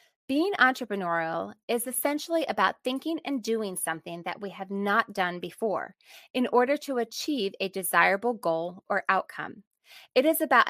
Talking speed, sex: 150 wpm, female